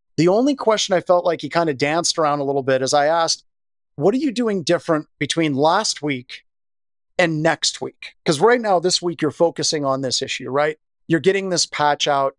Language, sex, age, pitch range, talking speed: English, male, 40-59, 145-180 Hz, 215 wpm